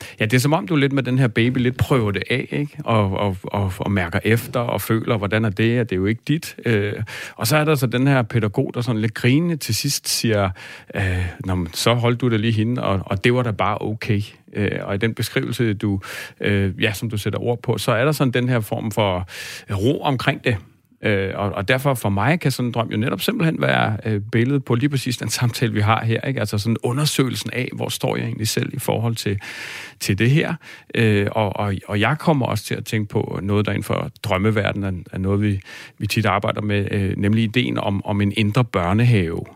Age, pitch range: 40-59, 100-125 Hz